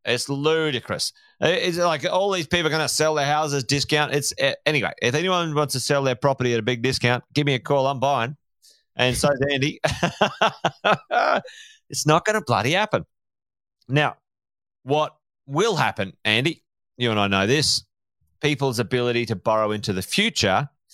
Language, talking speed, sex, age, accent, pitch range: English, 170 wpm, male, 30-49, Australian, 115-150 Hz